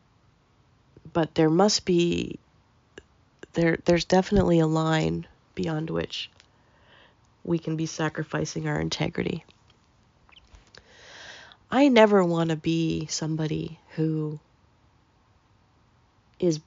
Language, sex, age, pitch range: English, female, 30-49, 105-165 Hz